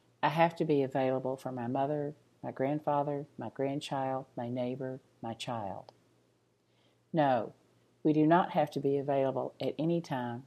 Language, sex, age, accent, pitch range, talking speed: English, female, 50-69, American, 125-160 Hz, 155 wpm